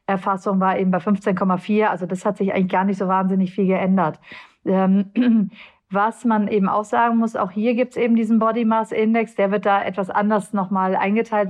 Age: 40-59